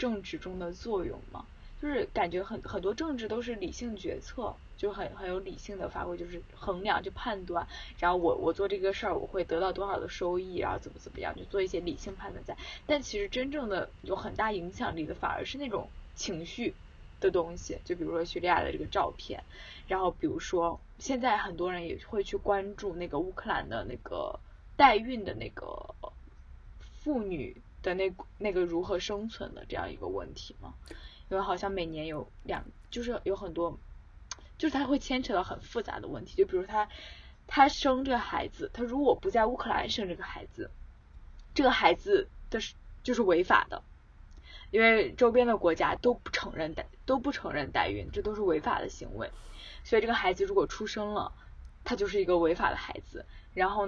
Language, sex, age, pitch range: Chinese, female, 10-29, 180-260 Hz